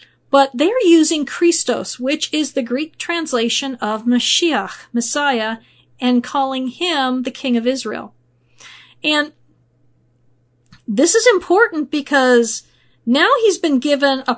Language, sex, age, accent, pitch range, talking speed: English, female, 40-59, American, 230-300 Hz, 120 wpm